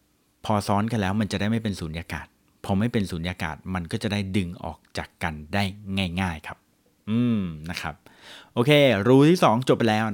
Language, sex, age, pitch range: Thai, male, 30-49, 95-130 Hz